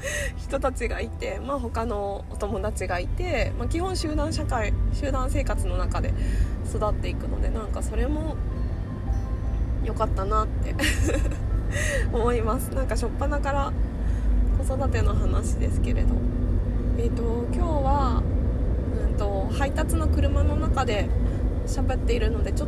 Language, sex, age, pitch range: Japanese, female, 20-39, 85-95 Hz